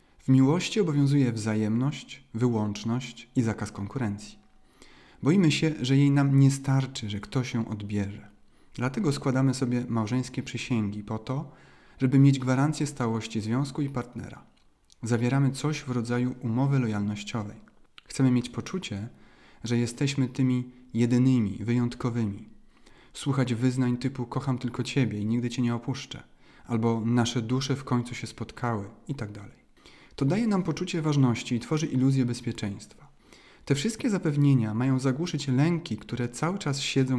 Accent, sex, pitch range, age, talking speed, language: native, male, 115-135 Hz, 40-59, 135 wpm, Polish